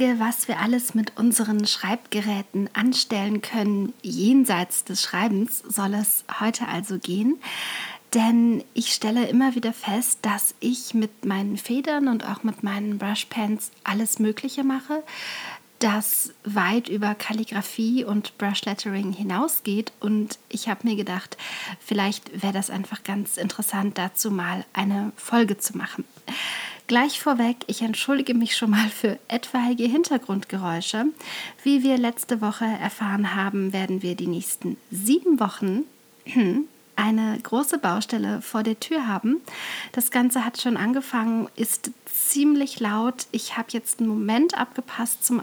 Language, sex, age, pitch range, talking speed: German, female, 40-59, 205-245 Hz, 135 wpm